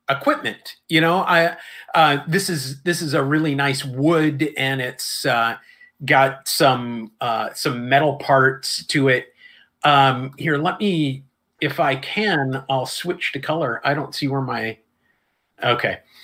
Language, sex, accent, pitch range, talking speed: English, male, American, 130-170 Hz, 150 wpm